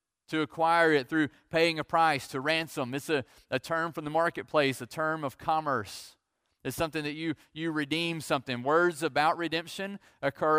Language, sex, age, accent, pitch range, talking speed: English, male, 30-49, American, 135-160 Hz, 175 wpm